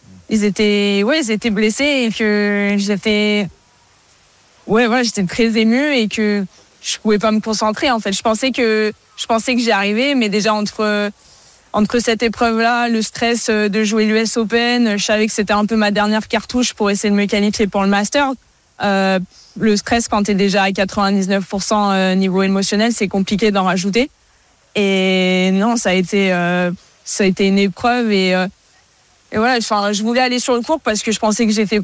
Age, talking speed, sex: 20-39, 190 wpm, female